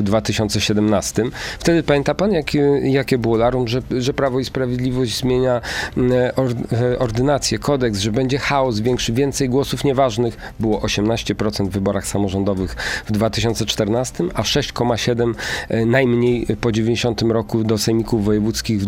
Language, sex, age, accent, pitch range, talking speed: Polish, male, 40-59, native, 110-130 Hz, 130 wpm